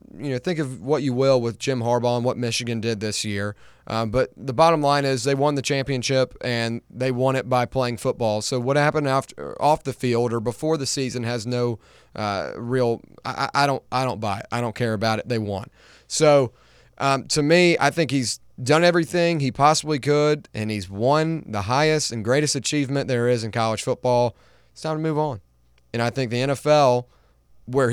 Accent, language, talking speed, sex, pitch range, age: American, English, 210 wpm, male, 120-150 Hz, 30-49